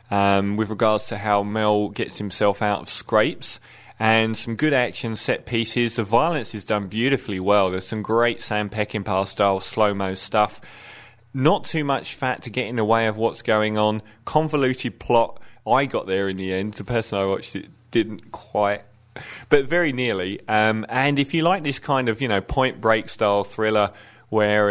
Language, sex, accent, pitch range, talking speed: English, male, British, 100-120 Hz, 180 wpm